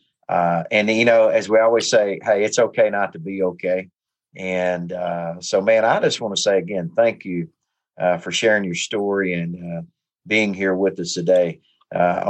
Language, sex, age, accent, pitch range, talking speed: English, male, 40-59, American, 90-110 Hz, 195 wpm